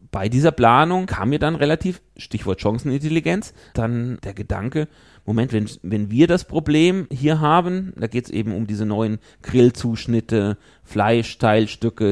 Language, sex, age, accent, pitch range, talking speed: German, male, 30-49, German, 110-140 Hz, 145 wpm